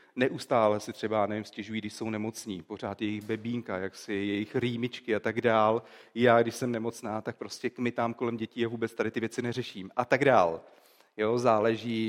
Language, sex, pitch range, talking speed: Czech, male, 115-155 Hz, 190 wpm